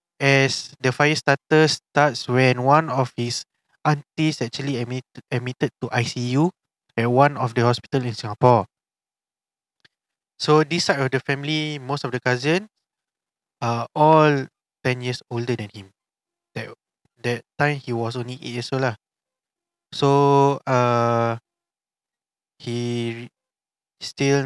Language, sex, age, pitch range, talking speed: English, male, 20-39, 120-145 Hz, 130 wpm